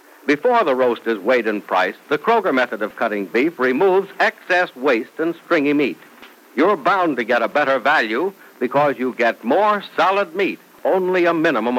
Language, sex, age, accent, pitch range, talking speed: English, male, 60-79, American, 115-165 Hz, 180 wpm